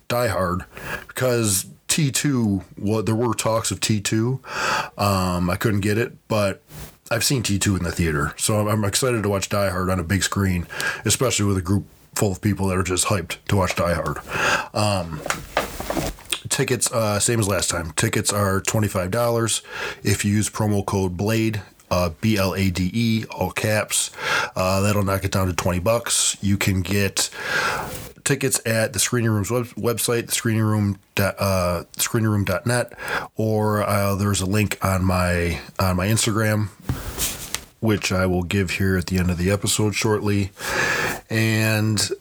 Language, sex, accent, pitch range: English, male, American, 90-110 Hz